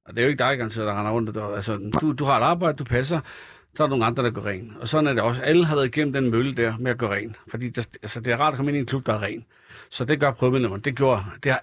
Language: Danish